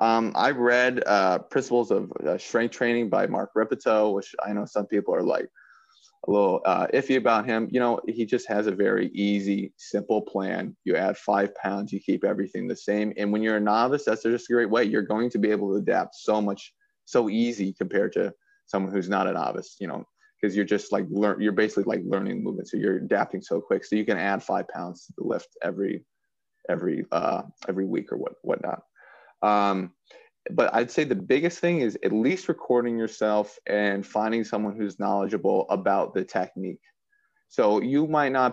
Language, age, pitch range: English, 20-39, 105-130 Hz